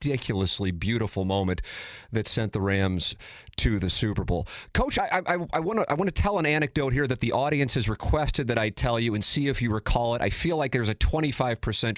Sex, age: male, 30-49